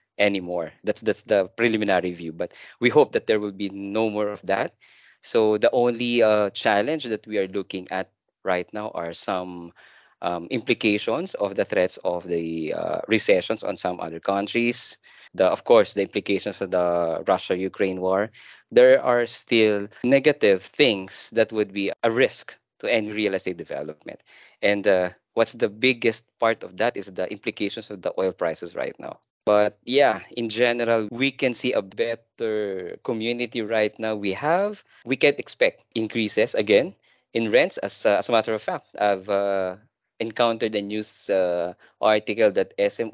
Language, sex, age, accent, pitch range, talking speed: English, male, 20-39, Filipino, 95-115 Hz, 170 wpm